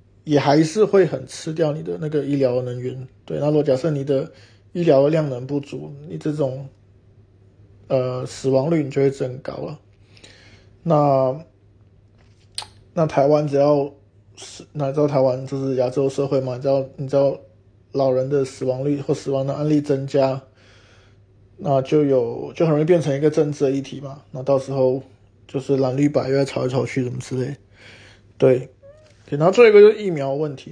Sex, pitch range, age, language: male, 105-145 Hz, 20-39, Chinese